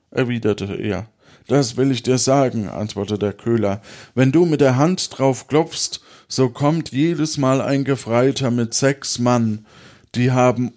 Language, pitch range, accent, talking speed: German, 115-155 Hz, German, 155 wpm